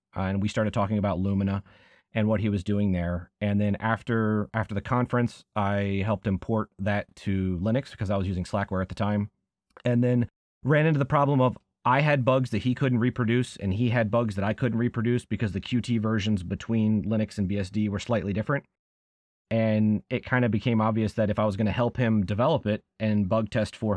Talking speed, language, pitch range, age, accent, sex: 215 wpm, English, 95-115 Hz, 30-49, American, male